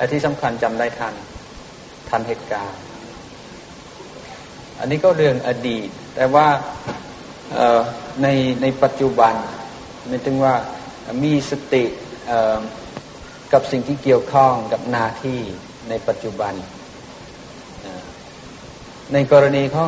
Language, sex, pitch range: Thai, male, 115-135 Hz